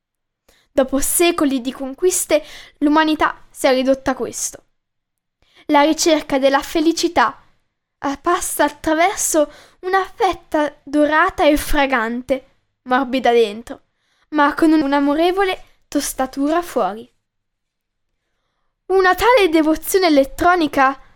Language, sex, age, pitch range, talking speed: Italian, female, 10-29, 270-350 Hz, 90 wpm